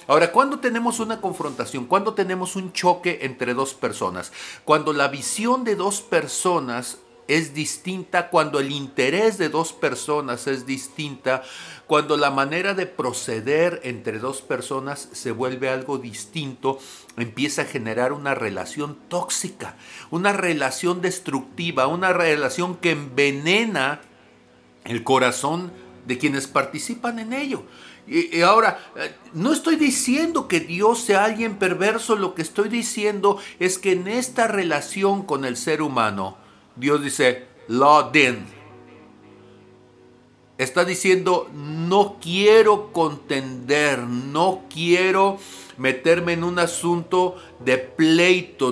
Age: 50-69